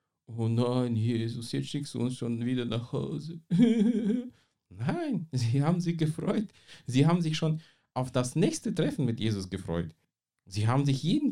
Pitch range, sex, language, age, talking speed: 115-185 Hz, male, German, 50-69, 165 wpm